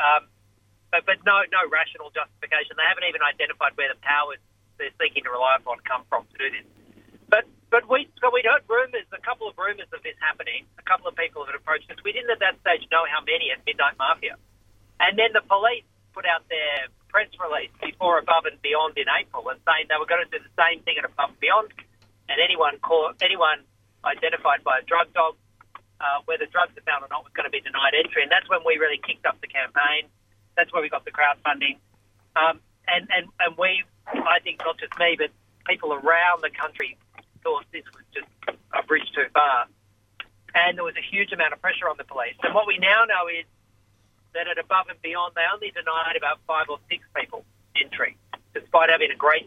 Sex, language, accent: male, English, Australian